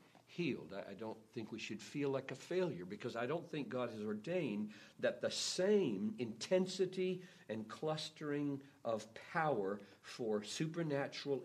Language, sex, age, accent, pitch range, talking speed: English, male, 60-79, American, 105-145 Hz, 140 wpm